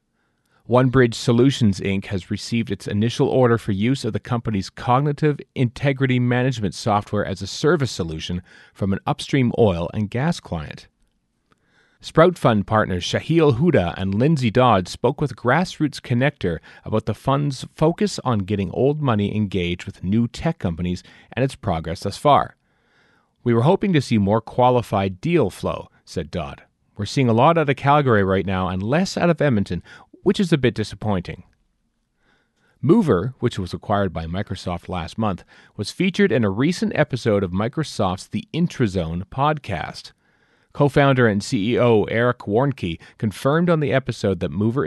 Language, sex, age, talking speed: English, male, 40-59, 160 wpm